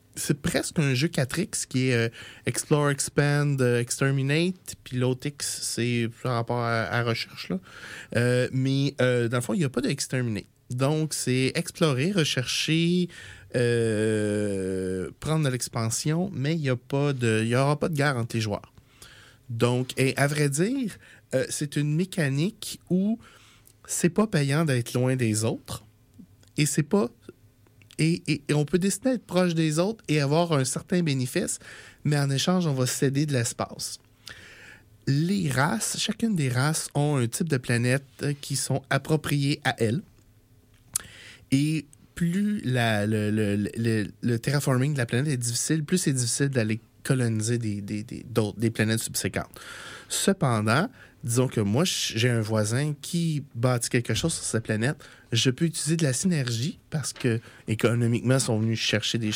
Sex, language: male, French